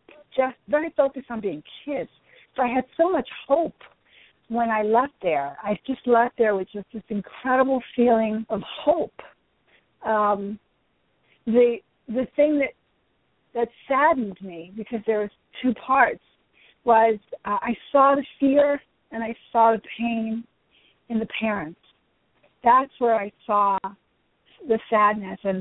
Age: 50-69